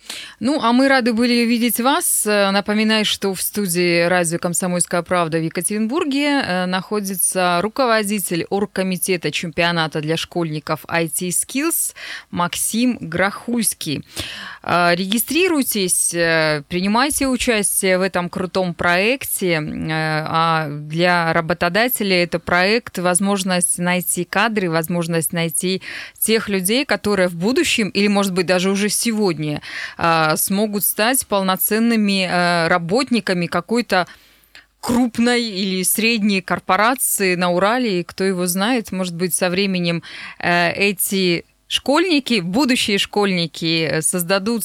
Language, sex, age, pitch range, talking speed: Russian, female, 20-39, 175-215 Hz, 100 wpm